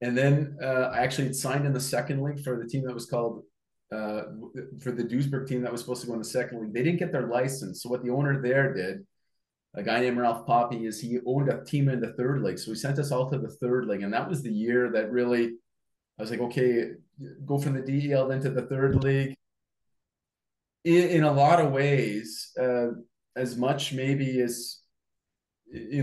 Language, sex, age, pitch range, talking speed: English, male, 30-49, 115-135 Hz, 225 wpm